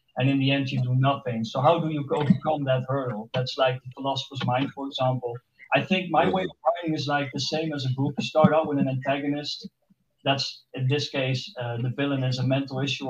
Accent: Dutch